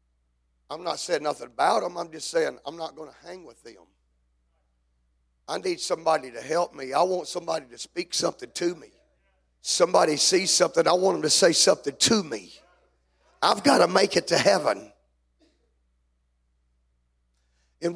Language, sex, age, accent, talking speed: English, male, 40-59, American, 165 wpm